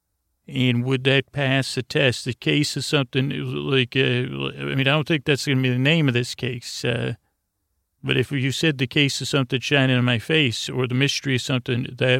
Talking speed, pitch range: 225 wpm, 115-140 Hz